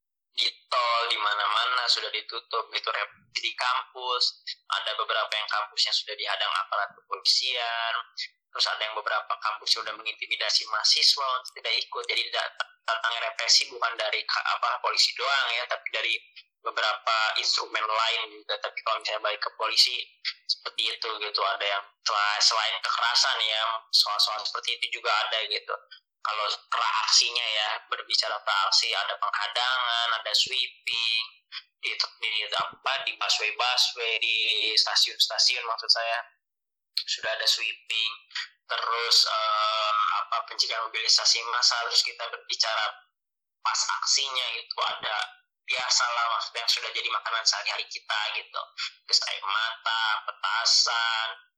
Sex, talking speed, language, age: male, 130 wpm, Indonesian, 20-39